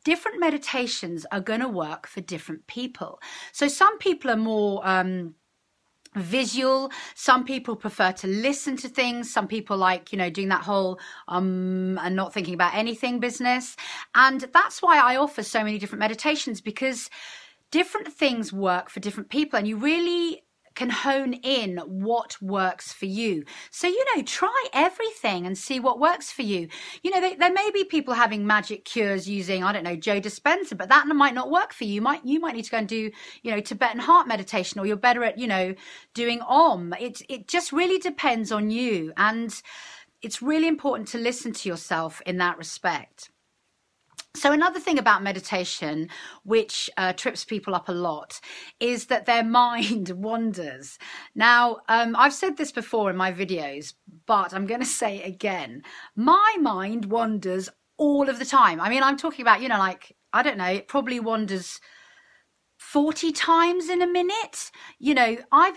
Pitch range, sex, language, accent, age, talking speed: 195-280 Hz, female, English, British, 40-59, 180 wpm